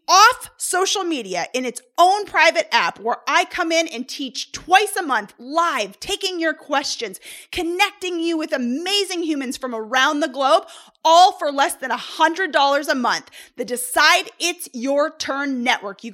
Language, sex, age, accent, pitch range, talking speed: English, female, 20-39, American, 195-315 Hz, 165 wpm